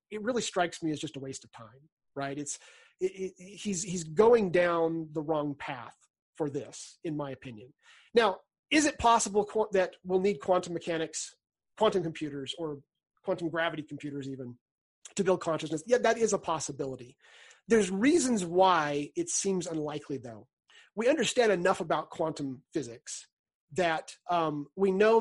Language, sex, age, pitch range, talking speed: English, male, 30-49, 145-200 Hz, 160 wpm